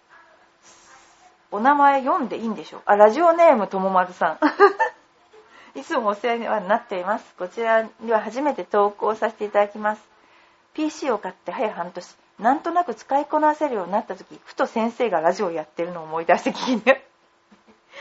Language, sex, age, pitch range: Japanese, female, 40-59, 210-300 Hz